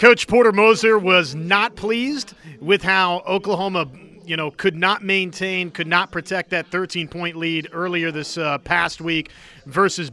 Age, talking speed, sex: 30-49, 155 wpm, male